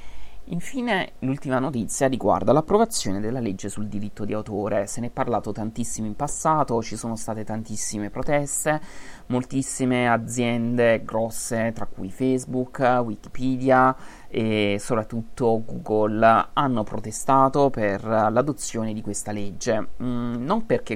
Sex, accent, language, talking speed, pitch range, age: male, native, Italian, 120 wpm, 110-130 Hz, 30-49